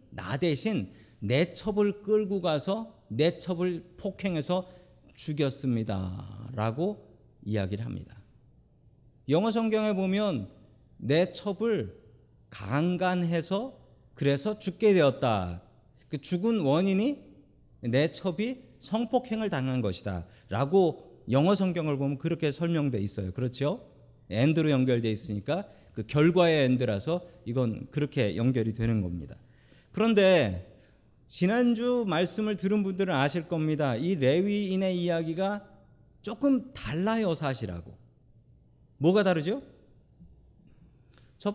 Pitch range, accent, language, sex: 125-195 Hz, native, Korean, male